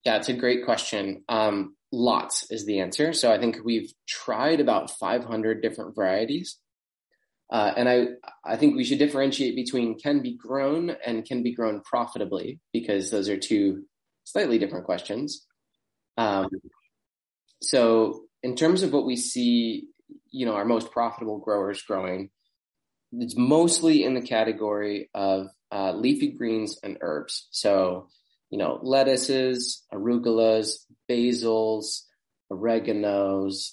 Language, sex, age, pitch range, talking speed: English, male, 20-39, 105-125 Hz, 135 wpm